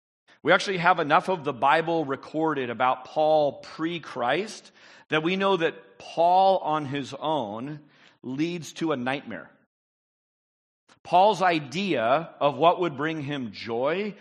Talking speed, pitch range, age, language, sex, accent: 130 wpm, 125-170 Hz, 40-59, English, male, American